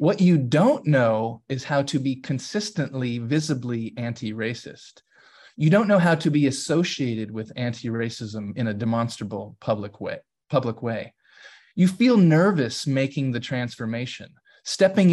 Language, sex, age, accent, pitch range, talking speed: English, male, 30-49, American, 115-160 Hz, 135 wpm